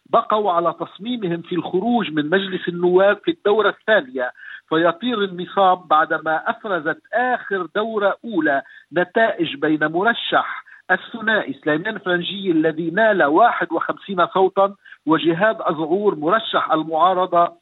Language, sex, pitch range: Arabic, male, 175-225 Hz